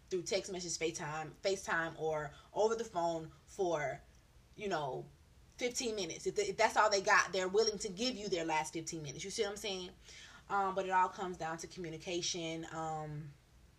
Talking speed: 185 wpm